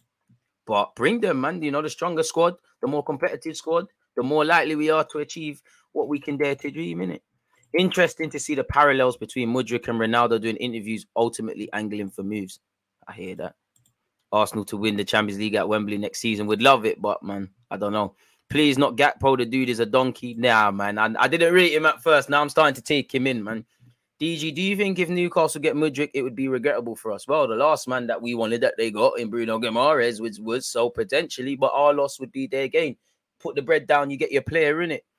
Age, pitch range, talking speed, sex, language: 20-39, 115-150 Hz, 240 wpm, male, English